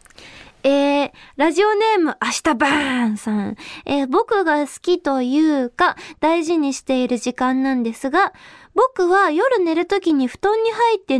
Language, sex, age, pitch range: Japanese, female, 20-39, 290-410 Hz